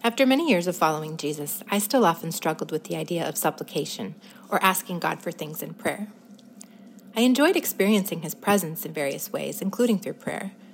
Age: 30-49